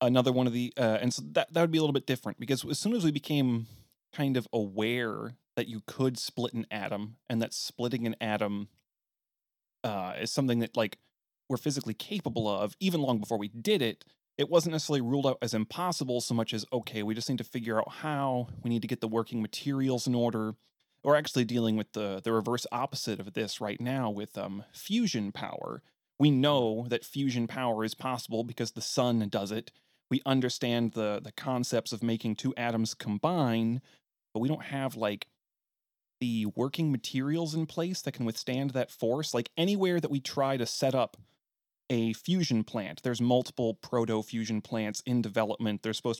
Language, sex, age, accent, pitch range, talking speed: English, male, 30-49, American, 110-135 Hz, 195 wpm